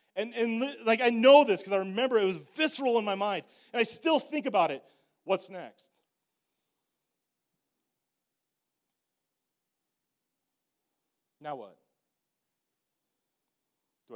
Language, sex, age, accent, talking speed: English, male, 30-49, American, 110 wpm